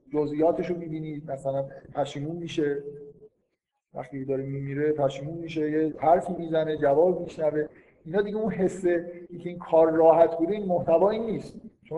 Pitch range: 145-180 Hz